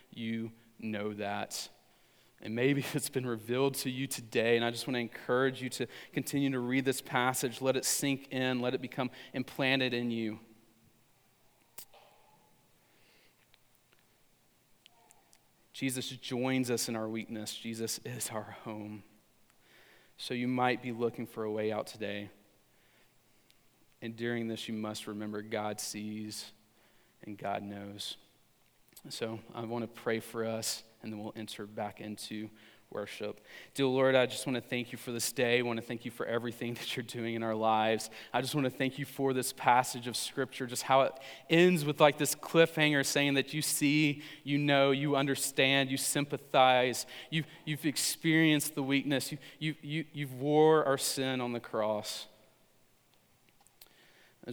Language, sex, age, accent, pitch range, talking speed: English, male, 30-49, American, 110-135 Hz, 165 wpm